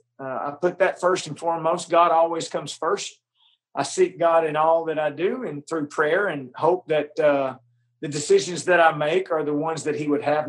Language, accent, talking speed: English, American, 215 wpm